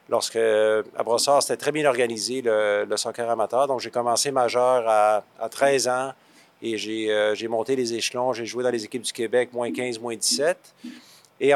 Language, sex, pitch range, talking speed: French, male, 115-130 Hz, 195 wpm